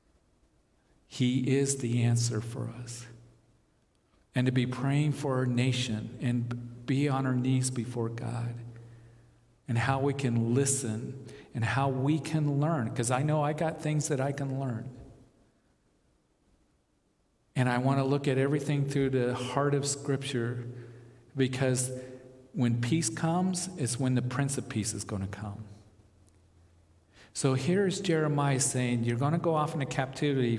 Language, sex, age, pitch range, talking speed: English, male, 50-69, 115-135 Hz, 150 wpm